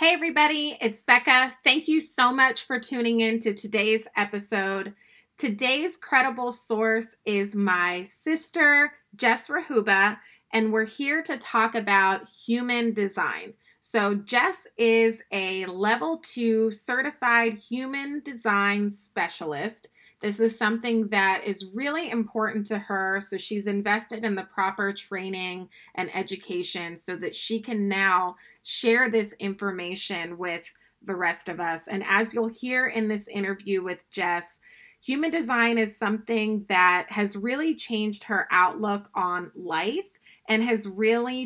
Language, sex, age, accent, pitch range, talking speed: English, female, 30-49, American, 195-240 Hz, 140 wpm